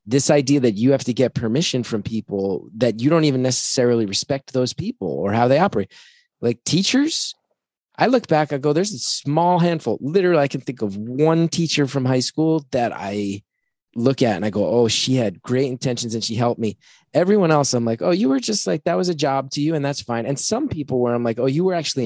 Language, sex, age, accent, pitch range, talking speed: English, male, 20-39, American, 105-140 Hz, 235 wpm